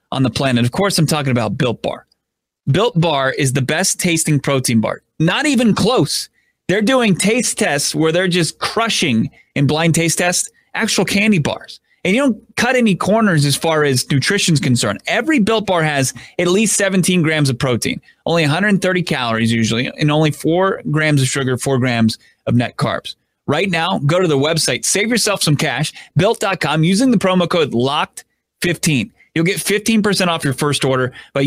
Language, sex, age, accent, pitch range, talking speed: English, male, 30-49, American, 135-185 Hz, 180 wpm